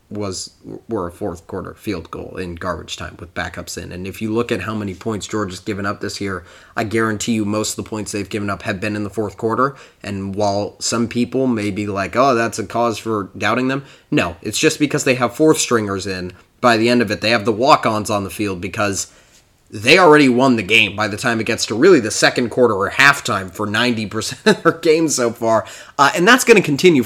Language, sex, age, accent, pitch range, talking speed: English, male, 20-39, American, 105-125 Hz, 240 wpm